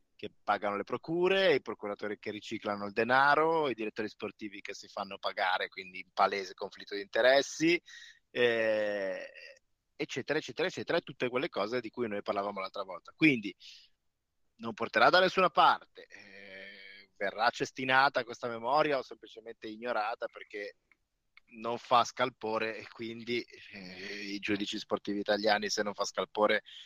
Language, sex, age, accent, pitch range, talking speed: Italian, male, 20-39, native, 105-140 Hz, 145 wpm